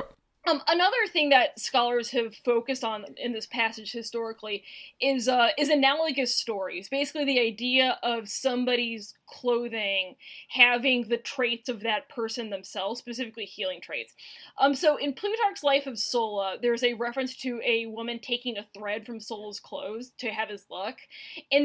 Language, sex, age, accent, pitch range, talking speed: English, female, 10-29, American, 225-275 Hz, 160 wpm